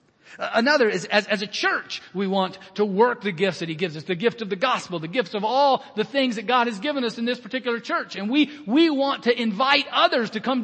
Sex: male